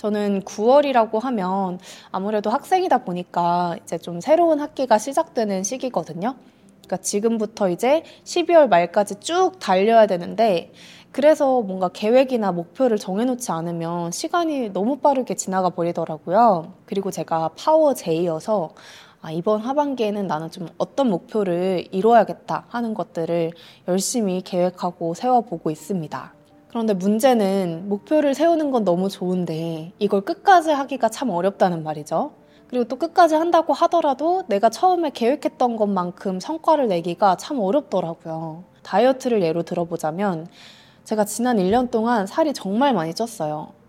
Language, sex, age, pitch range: Korean, female, 20-39, 180-280 Hz